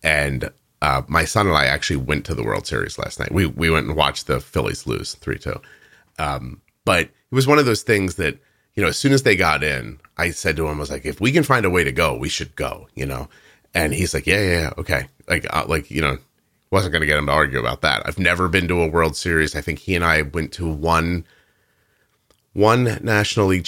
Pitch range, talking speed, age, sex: 75-95 Hz, 250 wpm, 30-49, male